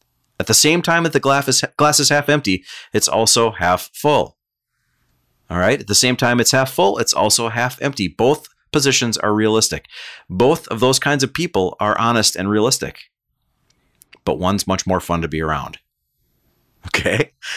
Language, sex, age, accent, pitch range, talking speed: English, male, 30-49, American, 95-130 Hz, 175 wpm